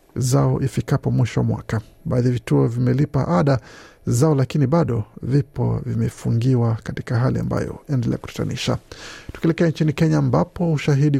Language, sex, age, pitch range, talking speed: Swahili, male, 50-69, 120-150 Hz, 125 wpm